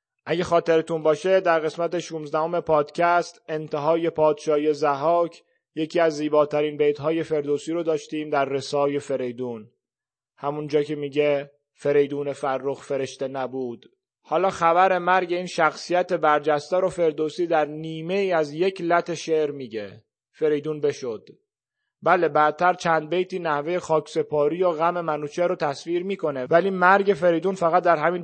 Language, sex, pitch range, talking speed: Persian, male, 150-180 Hz, 135 wpm